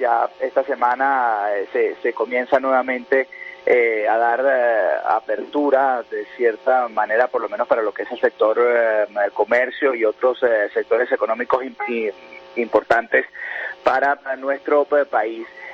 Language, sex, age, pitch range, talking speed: Spanish, male, 30-49, 130-170 Hz, 140 wpm